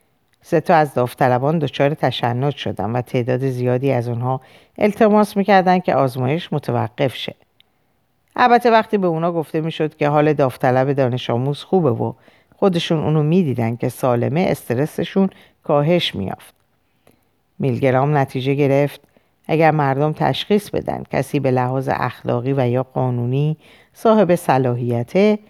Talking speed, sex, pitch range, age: 130 wpm, female, 125-165 Hz, 50-69